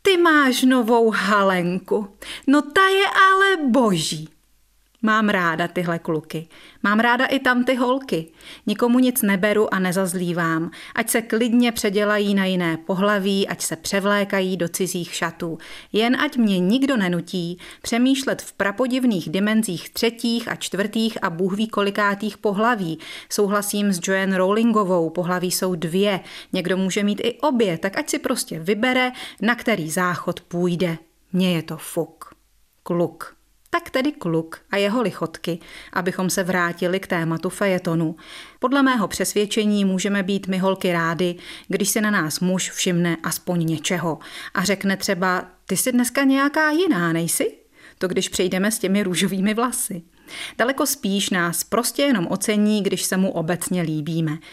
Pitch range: 175-230 Hz